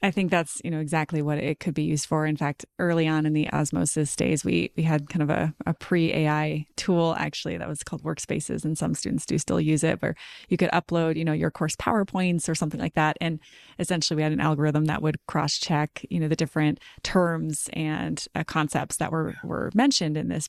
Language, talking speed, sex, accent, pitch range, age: English, 225 wpm, female, American, 150-165 Hz, 20-39